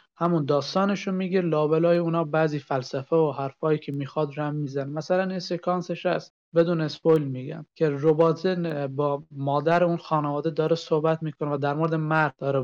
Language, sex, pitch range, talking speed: Persian, male, 145-165 Hz, 165 wpm